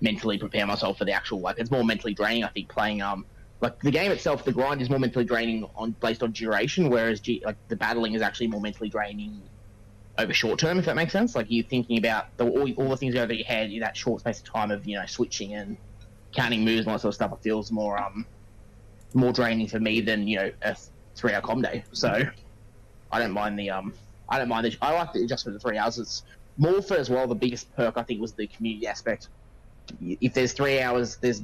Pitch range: 105-120 Hz